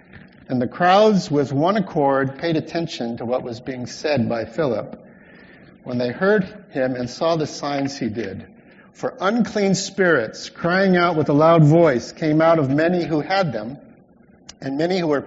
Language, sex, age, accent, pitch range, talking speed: English, male, 50-69, American, 135-180 Hz, 175 wpm